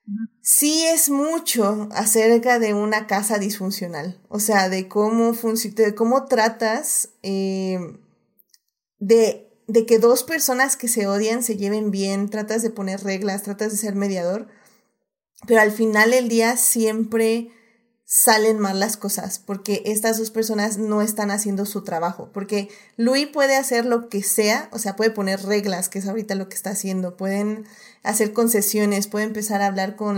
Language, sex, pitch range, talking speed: Spanish, female, 200-240 Hz, 165 wpm